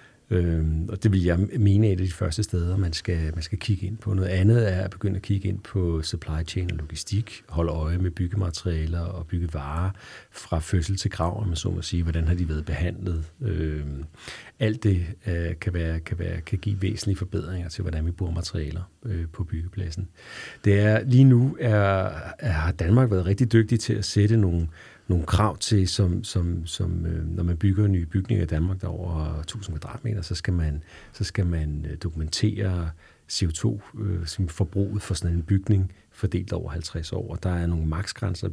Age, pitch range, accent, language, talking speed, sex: 40-59, 85-105 Hz, native, Danish, 195 wpm, male